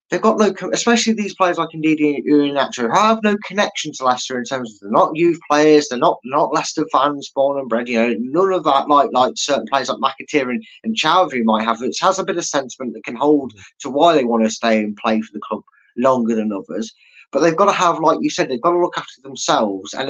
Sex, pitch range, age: male, 120-170 Hz, 20-39